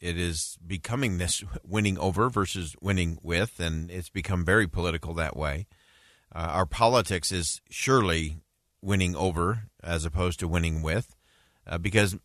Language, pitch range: English, 90-125 Hz